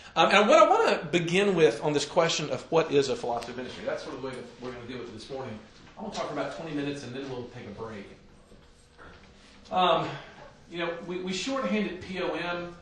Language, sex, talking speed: English, male, 250 wpm